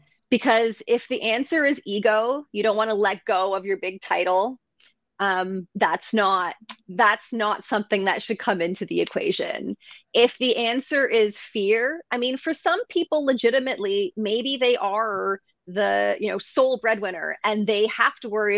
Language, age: English, 30-49